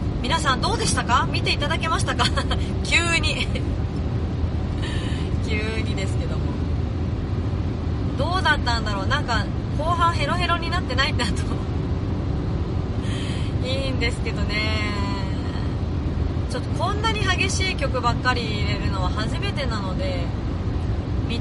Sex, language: female, Japanese